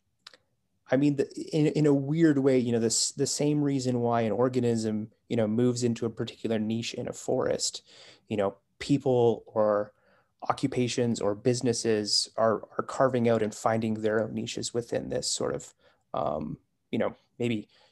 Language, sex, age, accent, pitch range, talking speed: English, male, 30-49, American, 110-135 Hz, 165 wpm